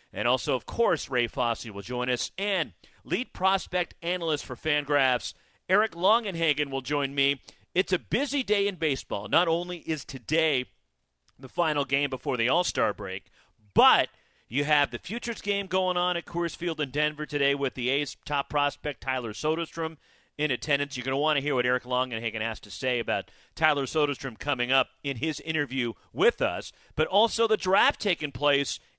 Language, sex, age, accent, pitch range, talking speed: English, male, 40-59, American, 130-175 Hz, 180 wpm